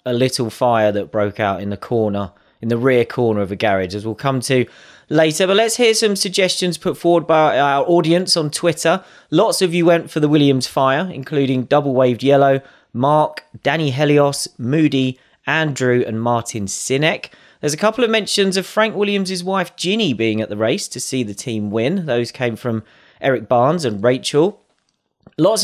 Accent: British